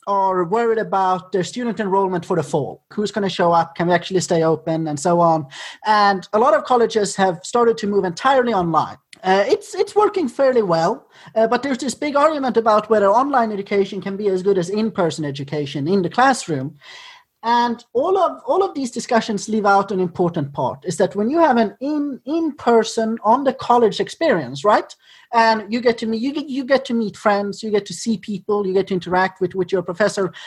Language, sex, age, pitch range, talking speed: English, male, 30-49, 190-250 Hz, 215 wpm